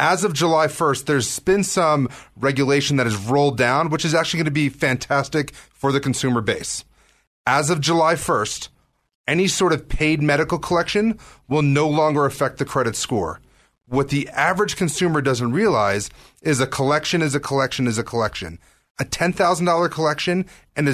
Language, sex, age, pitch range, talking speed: English, male, 30-49, 130-165 Hz, 170 wpm